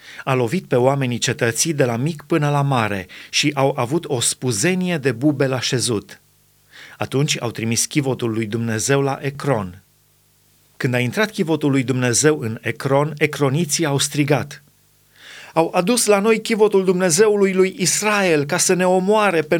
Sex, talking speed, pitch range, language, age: male, 160 wpm, 130-170 Hz, Romanian, 30-49